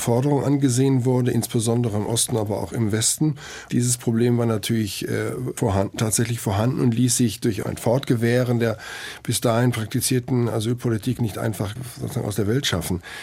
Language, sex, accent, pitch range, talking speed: German, male, German, 110-125 Hz, 155 wpm